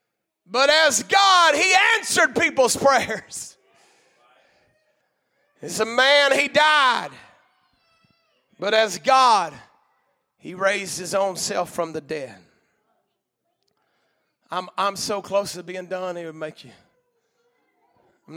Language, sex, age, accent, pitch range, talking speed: English, male, 30-49, American, 160-225 Hz, 115 wpm